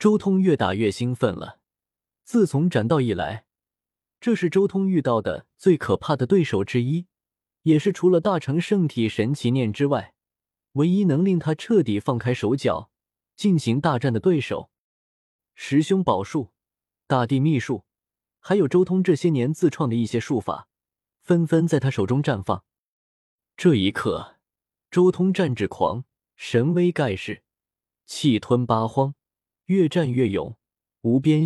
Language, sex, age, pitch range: Chinese, male, 20-39, 115-175 Hz